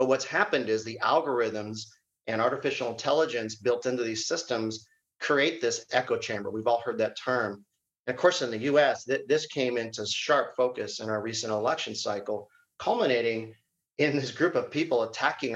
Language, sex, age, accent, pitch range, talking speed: English, male, 40-59, American, 115-135 Hz, 170 wpm